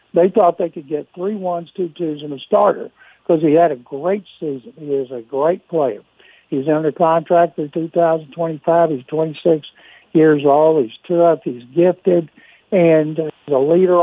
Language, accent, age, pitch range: English, American, 60-79, 145-175 Hz